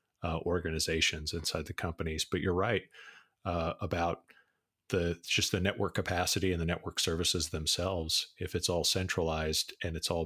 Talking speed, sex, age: 160 wpm, male, 30-49